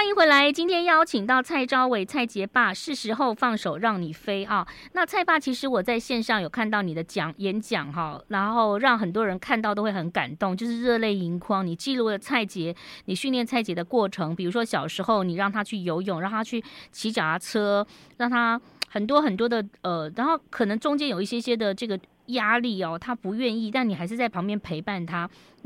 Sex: female